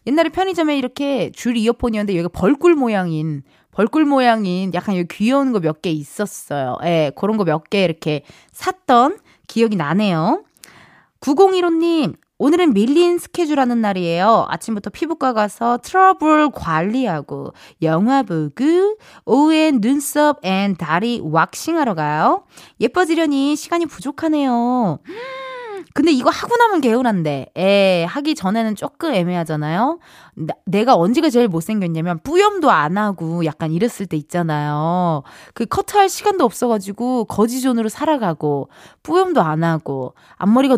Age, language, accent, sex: 20-39, Korean, native, female